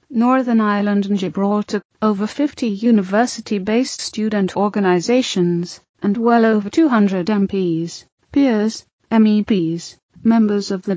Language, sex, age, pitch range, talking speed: English, female, 30-49, 195-225 Hz, 110 wpm